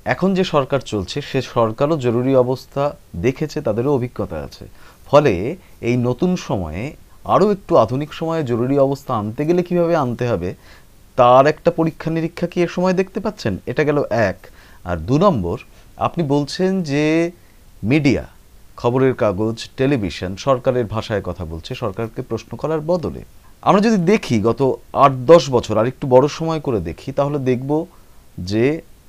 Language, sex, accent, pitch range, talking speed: English, male, Indian, 115-170 Hz, 100 wpm